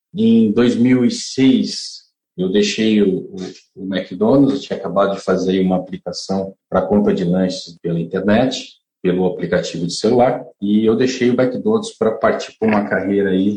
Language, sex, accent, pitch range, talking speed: Portuguese, male, Brazilian, 95-125 Hz, 160 wpm